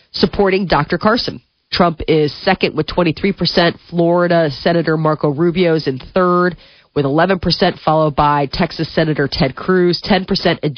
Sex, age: female, 30-49